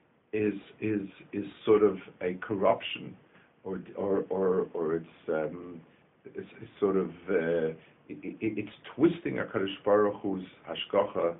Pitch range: 90-115 Hz